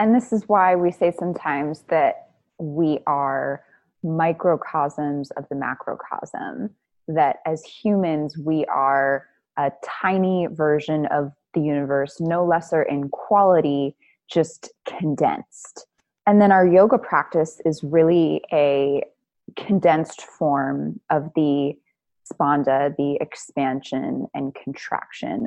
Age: 20-39